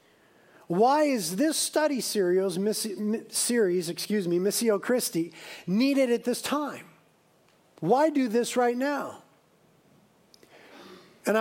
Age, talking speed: 50-69, 100 wpm